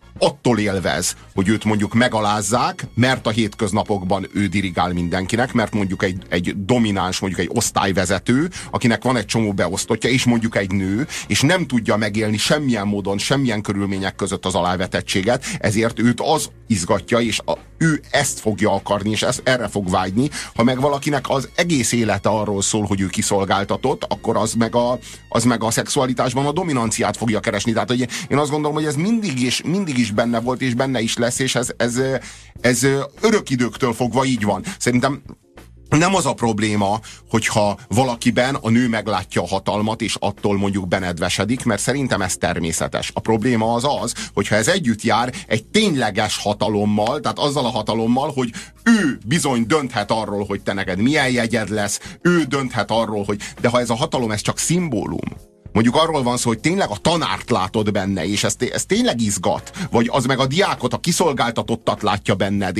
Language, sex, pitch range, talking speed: Hungarian, male, 100-130 Hz, 175 wpm